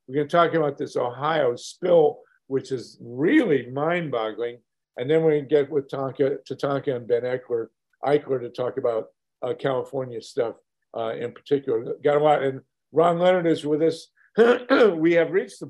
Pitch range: 140-185 Hz